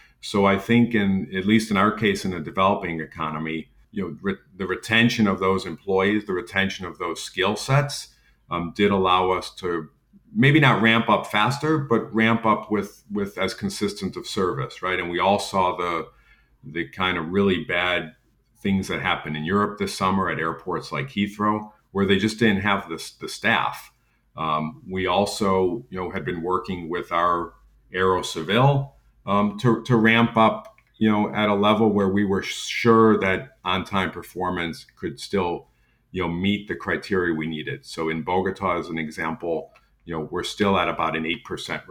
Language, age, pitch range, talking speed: English, 50-69, 85-105 Hz, 185 wpm